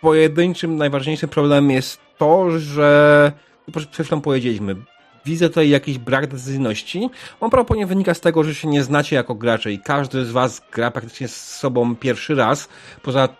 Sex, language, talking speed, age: male, Polish, 170 wpm, 30-49